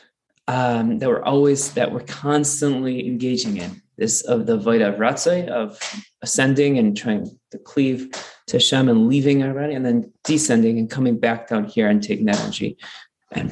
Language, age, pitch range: English, 20-39, 125-160 Hz